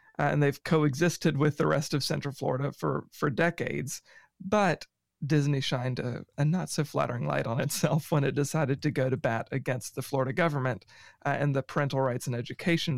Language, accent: English, American